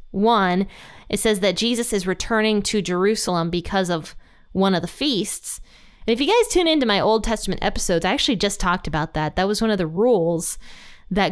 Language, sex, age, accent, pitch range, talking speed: English, female, 20-39, American, 175-220 Hz, 200 wpm